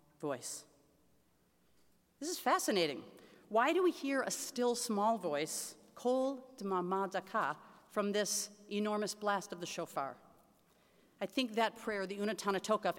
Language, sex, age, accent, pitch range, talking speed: English, female, 40-59, American, 170-215 Hz, 125 wpm